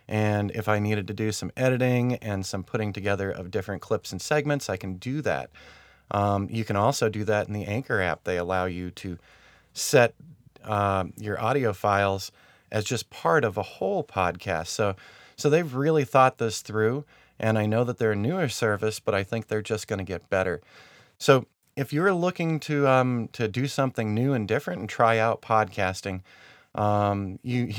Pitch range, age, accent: 100-125 Hz, 30-49, American